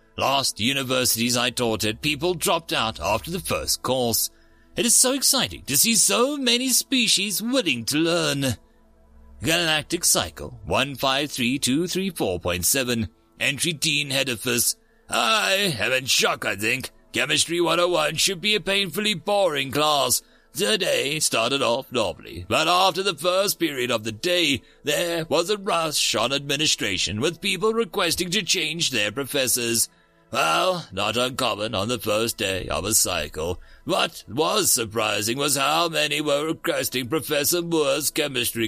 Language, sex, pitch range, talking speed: English, male, 120-180 Hz, 140 wpm